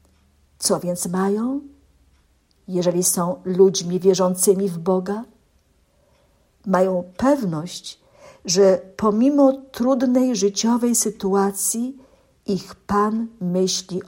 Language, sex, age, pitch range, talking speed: Polish, female, 50-69, 180-225 Hz, 80 wpm